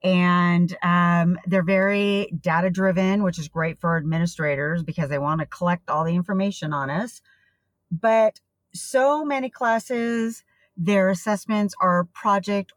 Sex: female